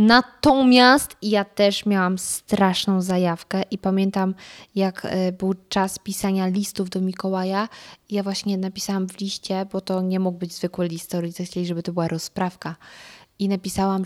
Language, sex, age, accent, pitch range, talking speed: Polish, female, 20-39, native, 185-220 Hz, 150 wpm